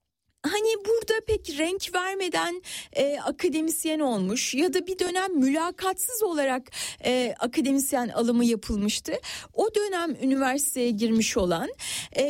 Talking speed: 115 wpm